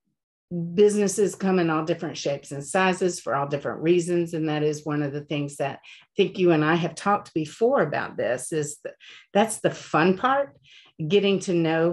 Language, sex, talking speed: English, female, 190 wpm